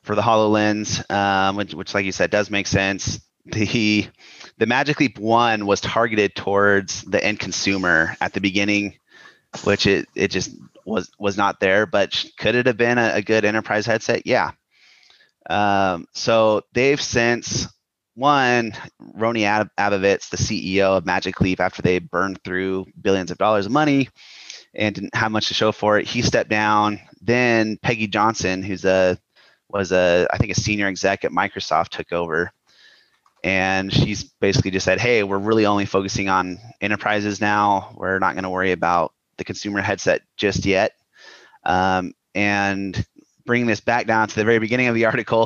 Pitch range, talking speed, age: 95-110 Hz, 170 wpm, 30-49